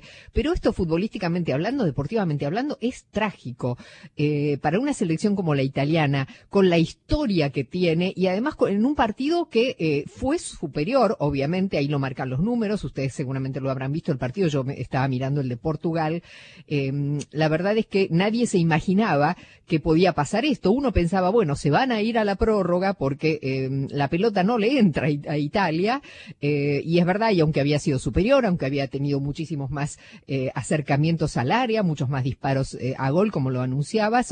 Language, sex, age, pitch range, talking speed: Spanish, female, 40-59, 145-200 Hz, 185 wpm